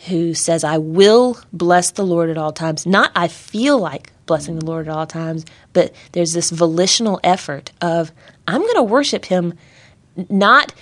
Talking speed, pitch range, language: 175 wpm, 160-195 Hz, English